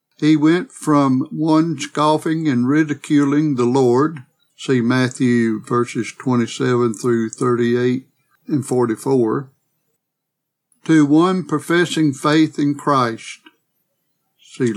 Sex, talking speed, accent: male, 100 wpm, American